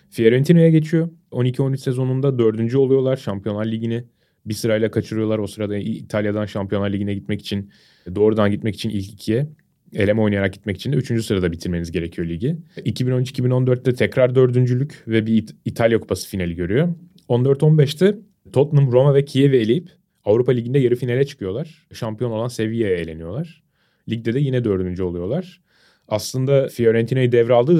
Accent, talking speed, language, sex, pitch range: native, 140 wpm, Turkish, male, 105-140 Hz